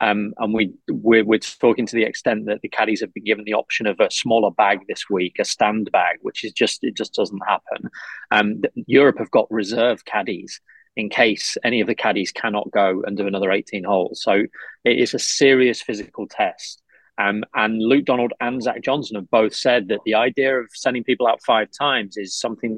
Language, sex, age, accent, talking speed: English, male, 30-49, British, 210 wpm